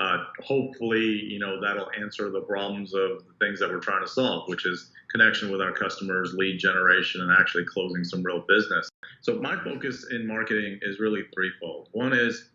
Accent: American